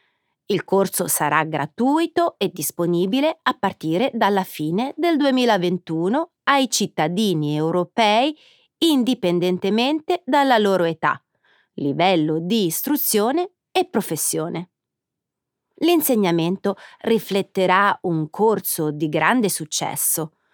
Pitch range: 170-255 Hz